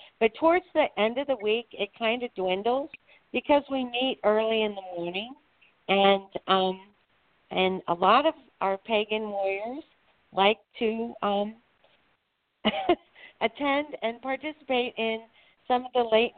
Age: 50-69